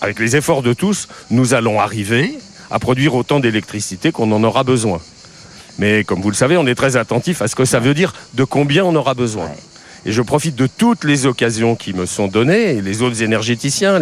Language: French